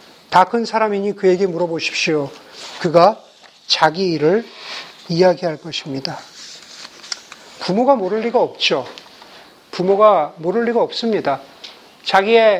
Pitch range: 175-230 Hz